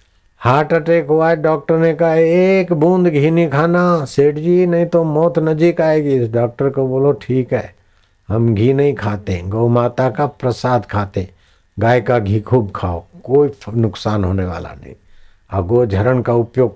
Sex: male